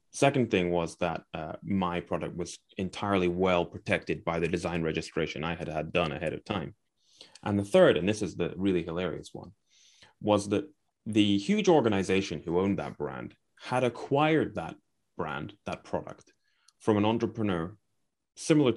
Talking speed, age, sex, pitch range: 165 wpm, 30-49, male, 90-115 Hz